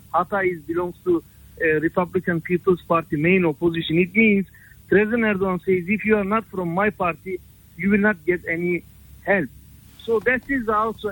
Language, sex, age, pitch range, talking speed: English, male, 50-69, 180-225 Hz, 165 wpm